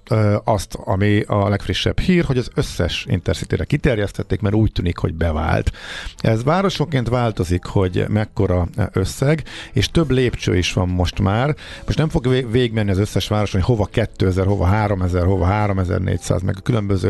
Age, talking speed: 50-69, 160 wpm